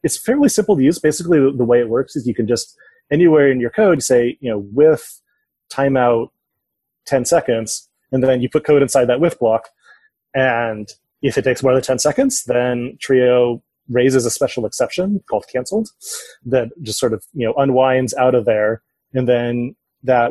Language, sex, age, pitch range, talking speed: English, male, 30-49, 120-160 Hz, 185 wpm